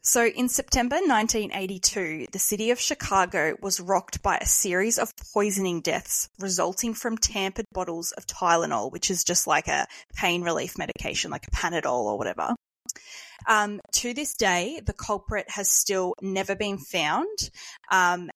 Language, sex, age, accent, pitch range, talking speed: English, female, 20-39, Australian, 180-215 Hz, 155 wpm